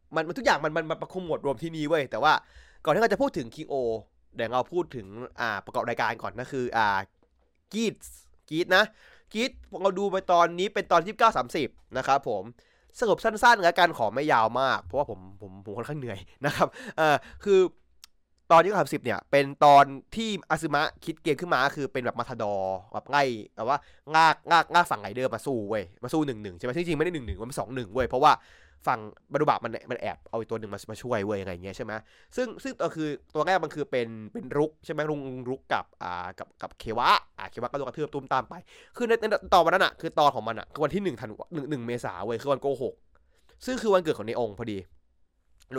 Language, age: Thai, 20-39